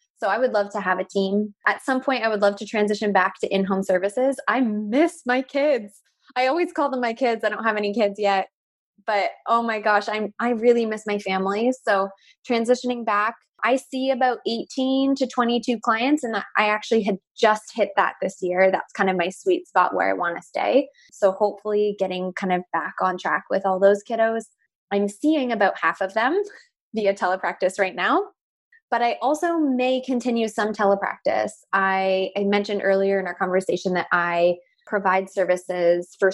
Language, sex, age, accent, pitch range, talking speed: English, female, 20-39, American, 185-235 Hz, 195 wpm